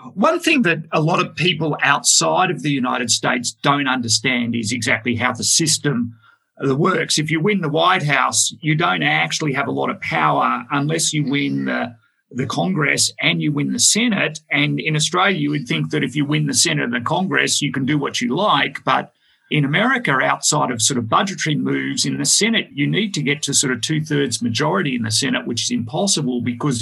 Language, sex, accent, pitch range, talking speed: English, male, Australian, 125-180 Hz, 210 wpm